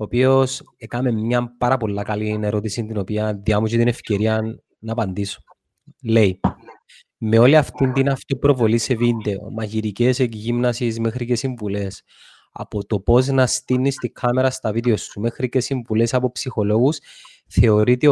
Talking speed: 145 wpm